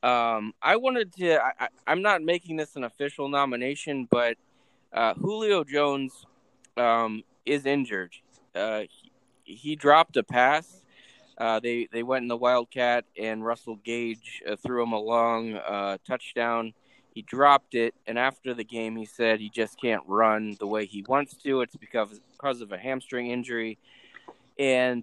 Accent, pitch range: American, 110-130 Hz